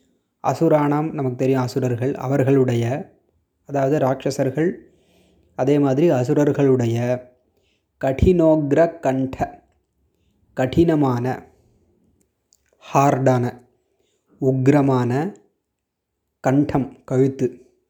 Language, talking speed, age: Tamil, 55 wpm, 20-39